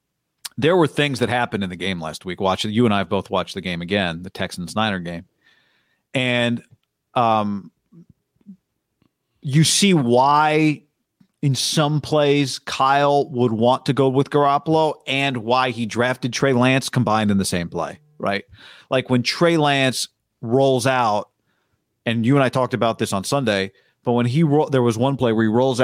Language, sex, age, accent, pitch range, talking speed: English, male, 40-59, American, 120-150 Hz, 170 wpm